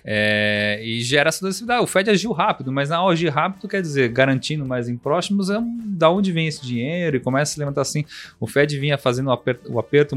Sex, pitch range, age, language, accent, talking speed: male, 120-160 Hz, 30-49, Portuguese, Brazilian, 240 wpm